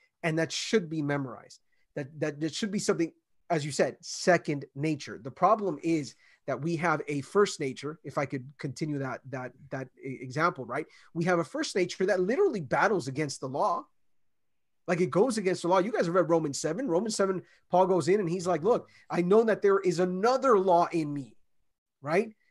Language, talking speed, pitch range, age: English, 205 wpm, 150-190 Hz, 30-49